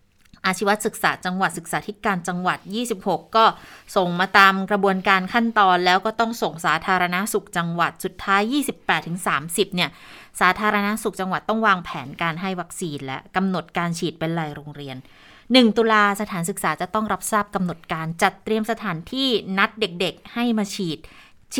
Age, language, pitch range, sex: 20-39, Thai, 170-215 Hz, female